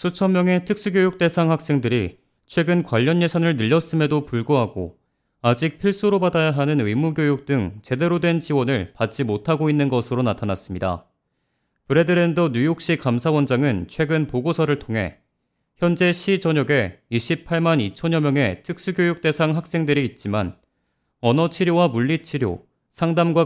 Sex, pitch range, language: male, 125-170 Hz, Korean